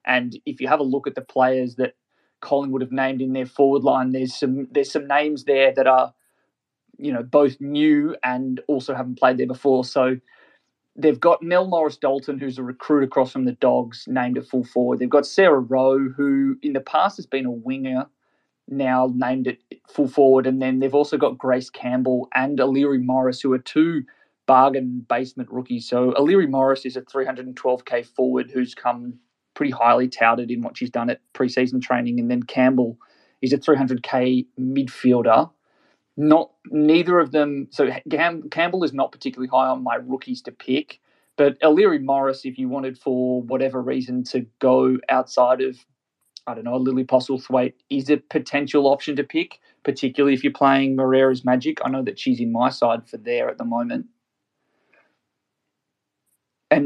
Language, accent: English, Australian